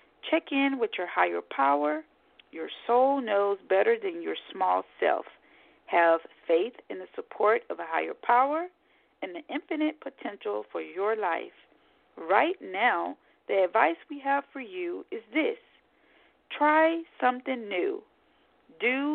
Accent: American